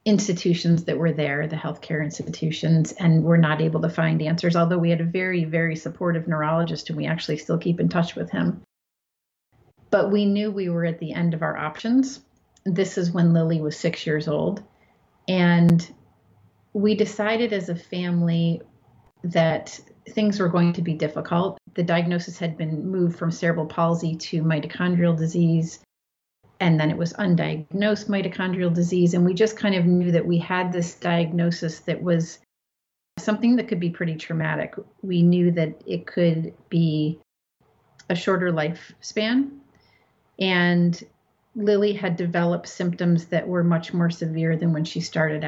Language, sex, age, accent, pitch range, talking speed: English, female, 30-49, American, 160-180 Hz, 160 wpm